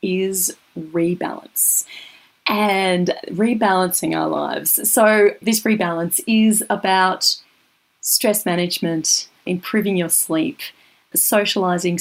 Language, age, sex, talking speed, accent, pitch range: English, 30-49, female, 85 wpm, Australian, 170-220 Hz